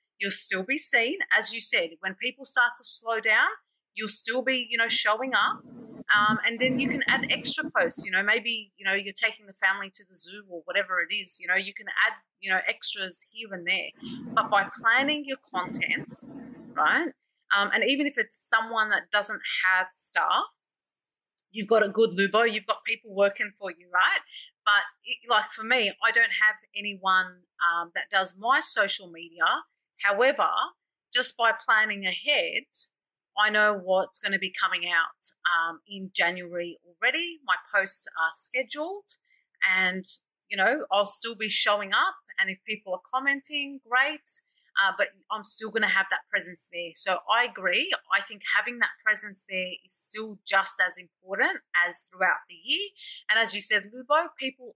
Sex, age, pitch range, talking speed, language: female, 30-49, 190-260 Hz, 180 wpm, English